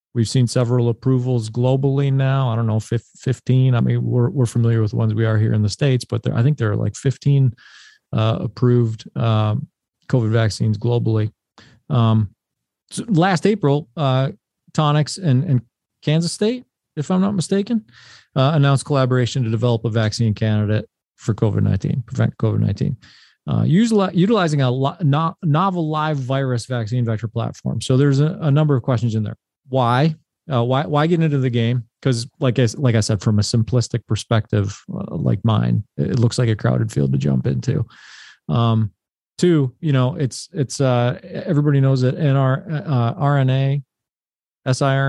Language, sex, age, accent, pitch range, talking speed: English, male, 40-59, American, 115-140 Hz, 170 wpm